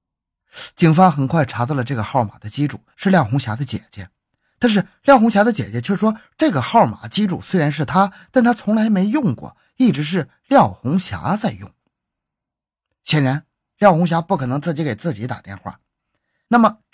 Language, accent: Chinese, native